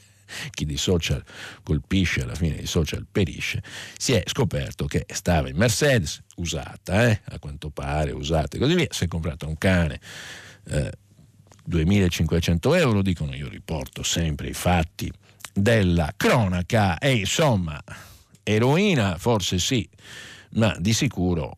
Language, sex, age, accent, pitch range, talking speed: Italian, male, 50-69, native, 80-105 Hz, 135 wpm